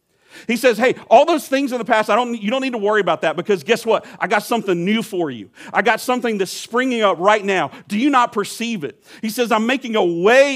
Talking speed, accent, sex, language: 260 wpm, American, male, English